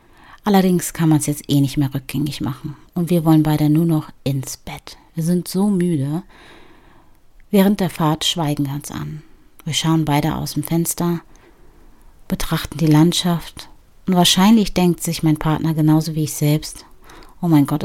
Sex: female